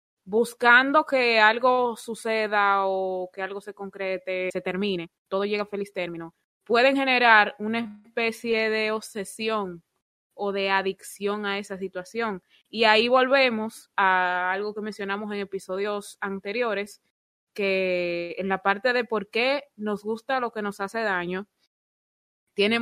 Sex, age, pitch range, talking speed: female, 20-39, 185-220 Hz, 140 wpm